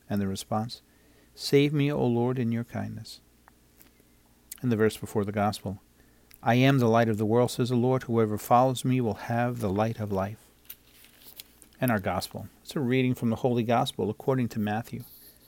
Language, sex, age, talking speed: English, male, 50-69, 185 wpm